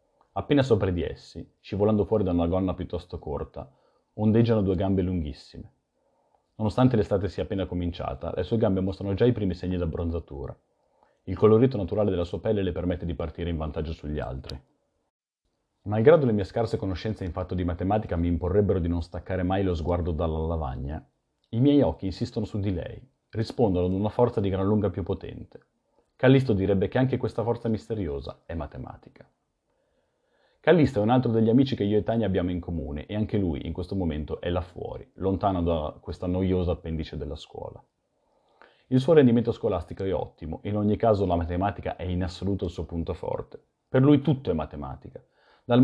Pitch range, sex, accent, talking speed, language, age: 85-110 Hz, male, native, 185 wpm, Italian, 30-49